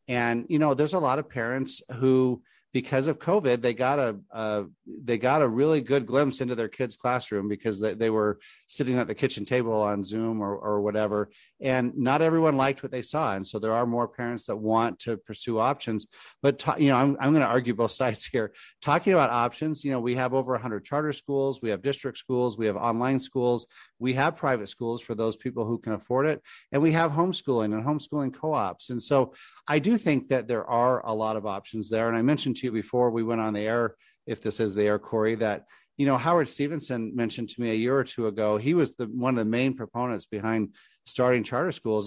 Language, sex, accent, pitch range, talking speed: English, male, American, 110-135 Hz, 230 wpm